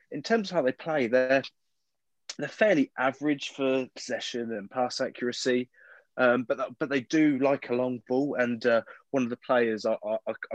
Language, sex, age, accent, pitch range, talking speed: English, male, 20-39, British, 110-135 Hz, 180 wpm